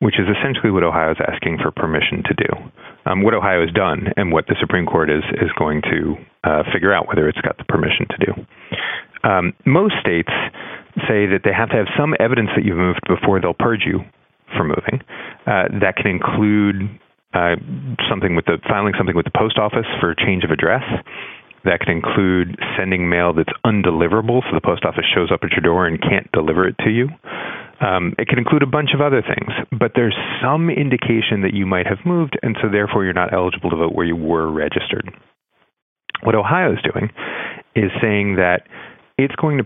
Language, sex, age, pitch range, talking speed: English, male, 40-59, 90-120 Hz, 205 wpm